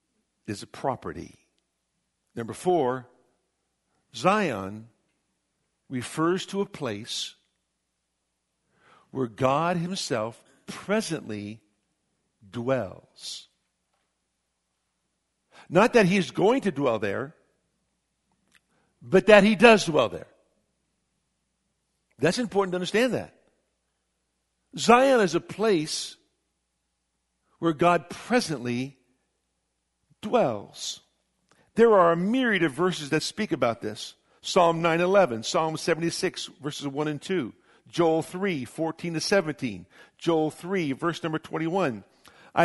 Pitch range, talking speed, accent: 130-200 Hz, 100 wpm, American